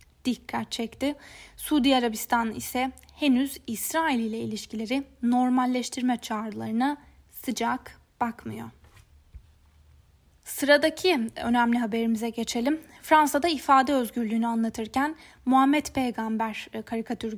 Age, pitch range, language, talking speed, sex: 10-29, 230-275 Hz, Turkish, 85 wpm, female